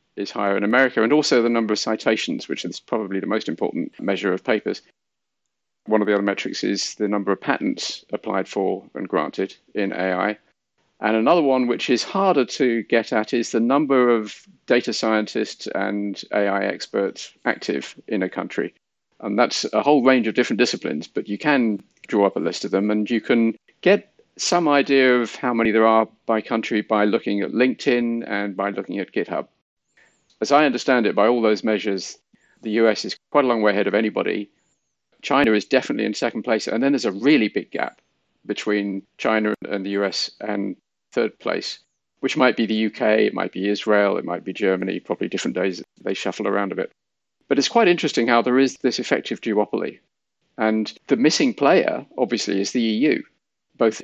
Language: English